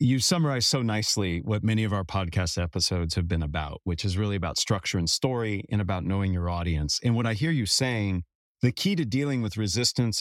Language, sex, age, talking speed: English, male, 40-59, 215 wpm